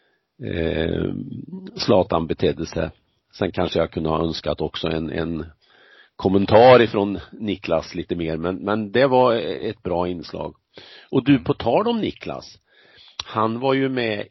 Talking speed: 145 wpm